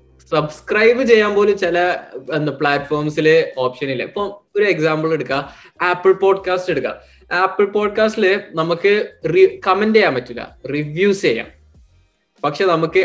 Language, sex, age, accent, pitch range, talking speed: Malayalam, male, 20-39, native, 130-205 Hz, 110 wpm